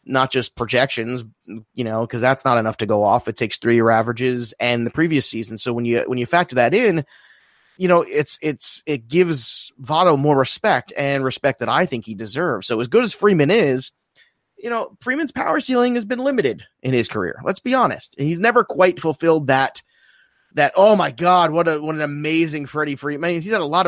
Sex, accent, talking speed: male, American, 210 wpm